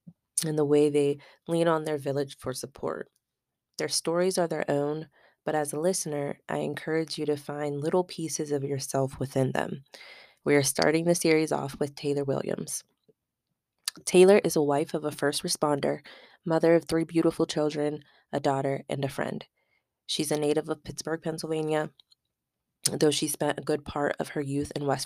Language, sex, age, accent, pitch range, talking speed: English, female, 20-39, American, 140-160 Hz, 175 wpm